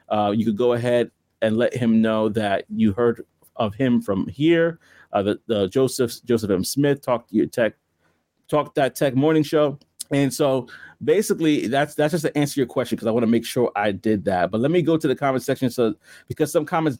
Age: 30-49